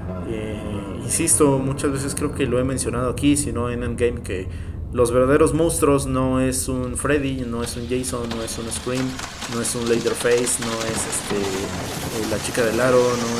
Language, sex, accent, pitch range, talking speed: English, male, Mexican, 110-135 Hz, 190 wpm